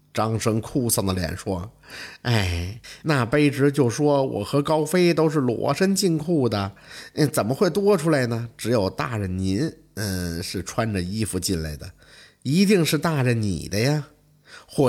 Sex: male